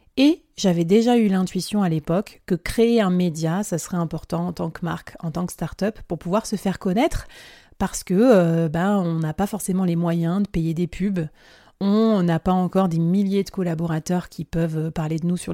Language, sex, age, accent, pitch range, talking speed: French, female, 30-49, French, 170-215 Hz, 210 wpm